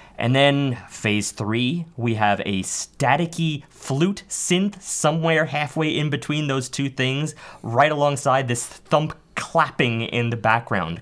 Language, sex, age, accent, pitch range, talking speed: English, male, 30-49, American, 115-160 Hz, 135 wpm